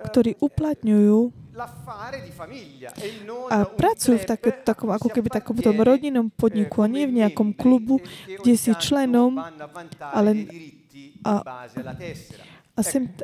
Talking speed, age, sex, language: 105 wpm, 20-39, female, Slovak